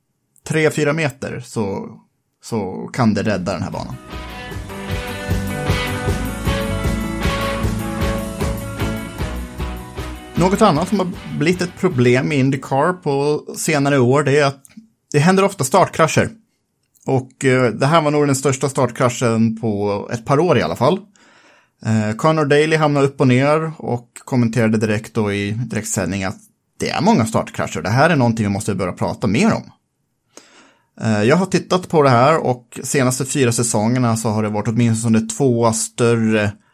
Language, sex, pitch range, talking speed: Swedish, male, 110-145 Hz, 140 wpm